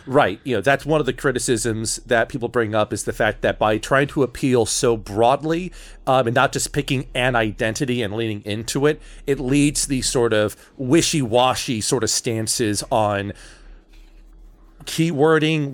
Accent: American